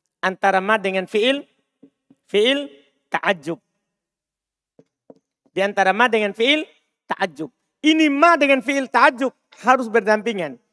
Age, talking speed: 40-59, 105 wpm